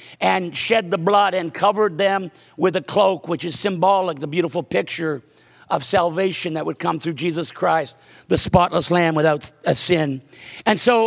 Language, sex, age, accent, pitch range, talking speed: English, male, 50-69, American, 185-220 Hz, 175 wpm